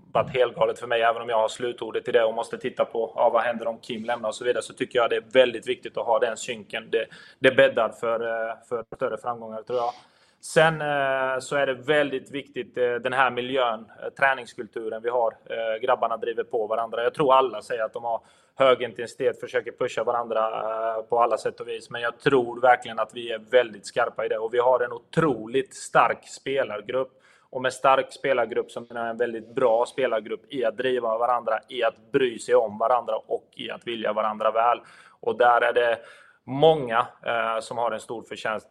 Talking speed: 205 wpm